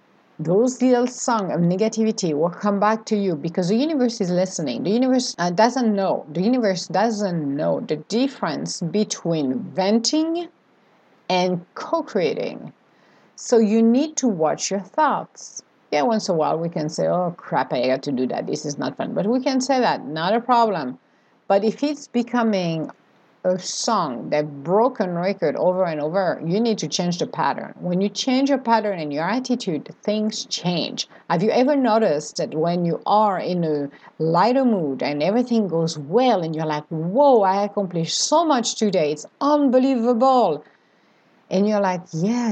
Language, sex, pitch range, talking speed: English, female, 170-245 Hz, 170 wpm